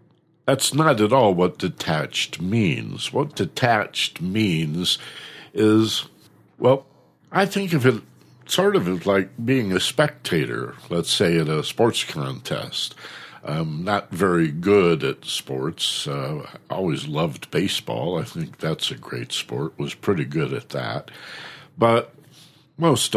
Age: 60-79